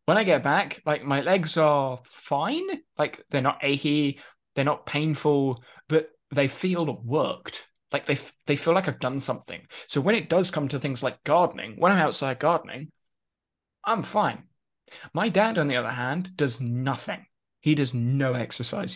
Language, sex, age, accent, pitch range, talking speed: English, male, 20-39, British, 130-165 Hz, 175 wpm